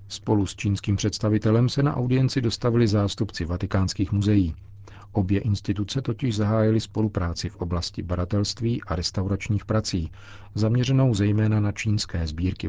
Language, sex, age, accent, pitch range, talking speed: Czech, male, 40-59, native, 95-105 Hz, 130 wpm